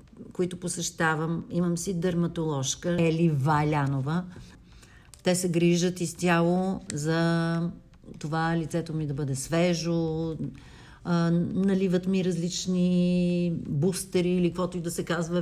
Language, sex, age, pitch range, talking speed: Bulgarian, female, 50-69, 165-185 Hz, 110 wpm